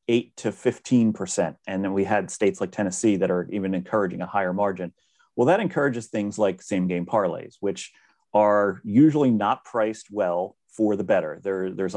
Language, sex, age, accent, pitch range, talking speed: English, male, 30-49, American, 95-120 Hz, 180 wpm